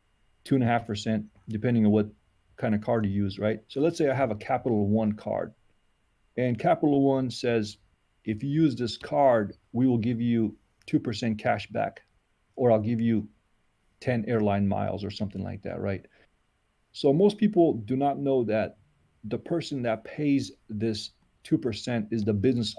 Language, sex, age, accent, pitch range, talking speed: English, male, 40-59, American, 105-125 Hz, 175 wpm